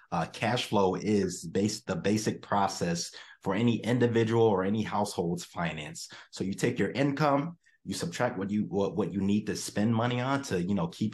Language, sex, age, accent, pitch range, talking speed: English, male, 30-49, American, 90-115 Hz, 195 wpm